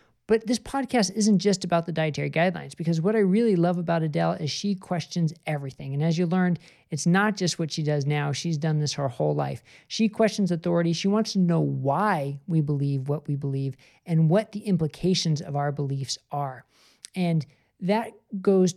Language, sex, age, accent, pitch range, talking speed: English, male, 40-59, American, 145-185 Hz, 195 wpm